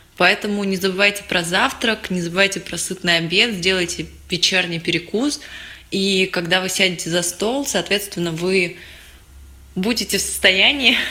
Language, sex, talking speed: Russian, female, 130 wpm